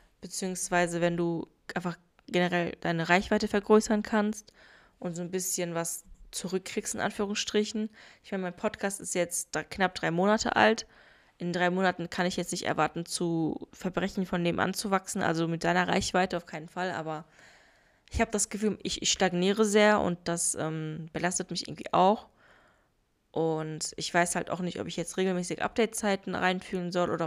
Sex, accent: female, German